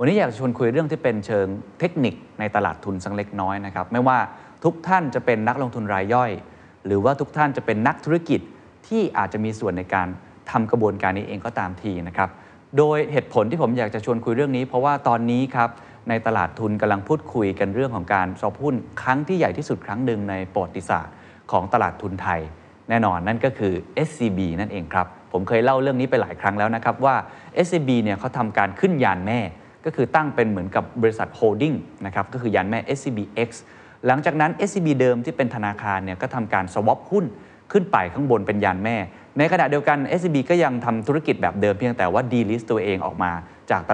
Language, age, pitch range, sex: Thai, 20-39, 100-145 Hz, male